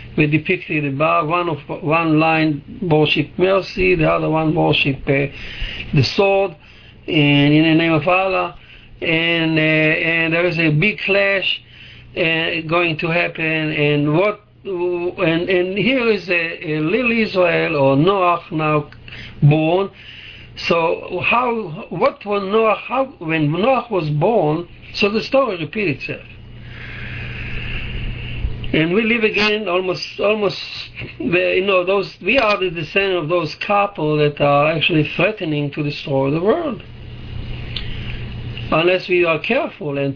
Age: 60-79